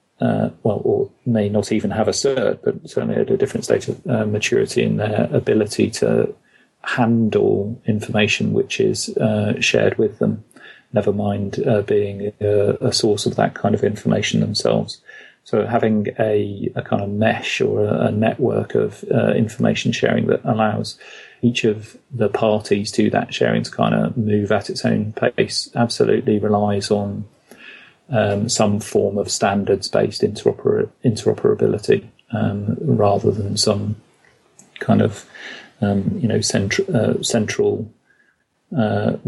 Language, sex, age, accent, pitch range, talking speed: English, male, 40-59, British, 105-115 Hz, 150 wpm